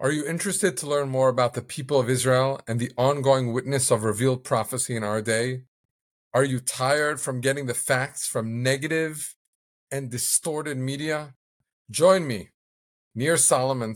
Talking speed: 160 wpm